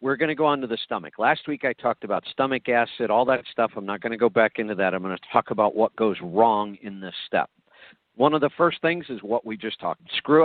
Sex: male